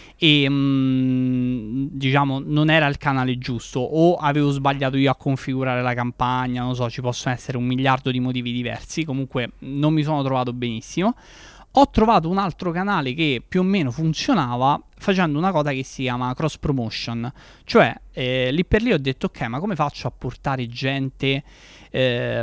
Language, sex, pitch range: Italian, male, 125-150 Hz